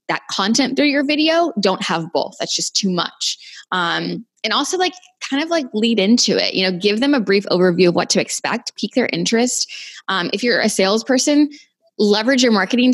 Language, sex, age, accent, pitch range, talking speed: English, female, 10-29, American, 175-230 Hz, 205 wpm